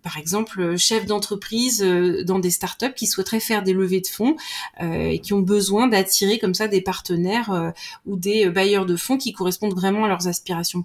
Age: 30-49